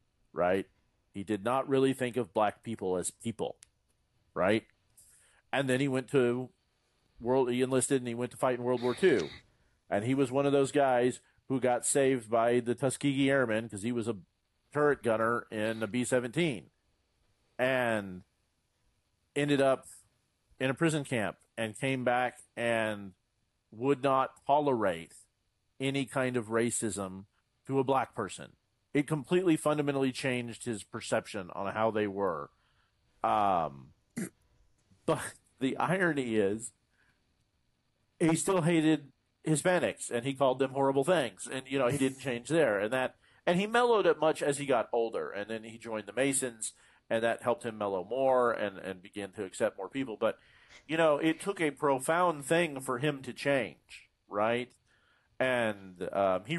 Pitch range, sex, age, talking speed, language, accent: 110-140 Hz, male, 40-59, 160 wpm, English, American